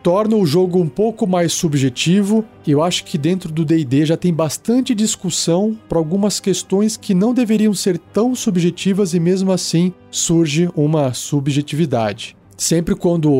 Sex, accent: male, Brazilian